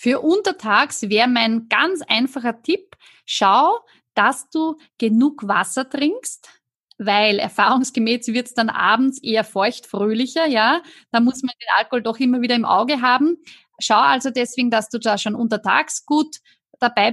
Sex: female